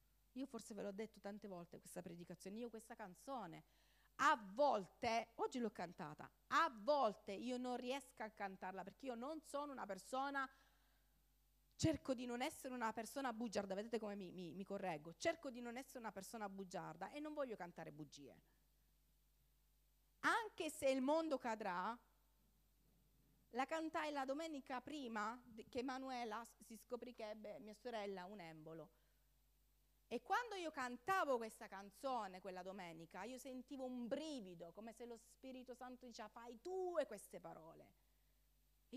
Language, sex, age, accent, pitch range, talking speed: Italian, female, 40-59, native, 205-270 Hz, 150 wpm